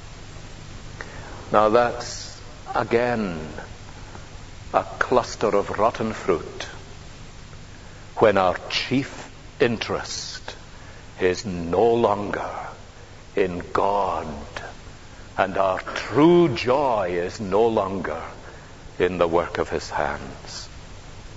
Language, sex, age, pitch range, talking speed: English, male, 60-79, 90-110 Hz, 85 wpm